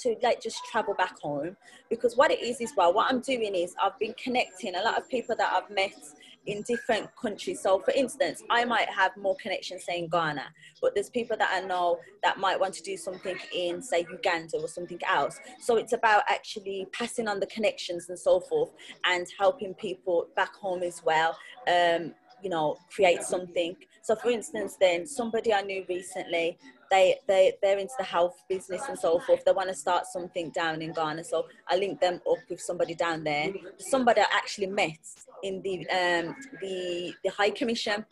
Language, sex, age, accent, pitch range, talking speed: English, female, 20-39, British, 180-230 Hz, 200 wpm